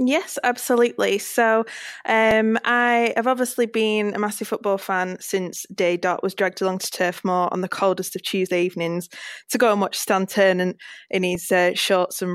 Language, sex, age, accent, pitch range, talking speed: English, female, 20-39, British, 190-210 Hz, 180 wpm